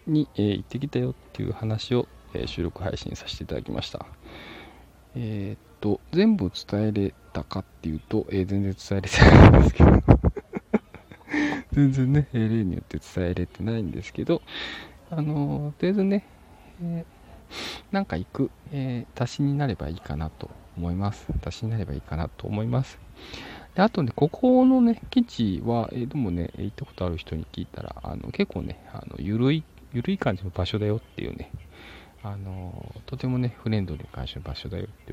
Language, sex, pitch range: Japanese, male, 90-135 Hz